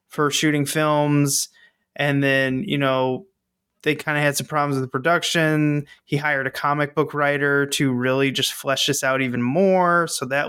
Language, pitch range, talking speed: English, 140-185 Hz, 185 wpm